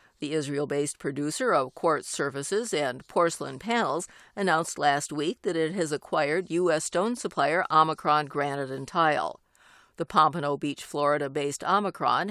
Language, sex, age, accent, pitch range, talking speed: English, female, 50-69, American, 150-190 Hz, 130 wpm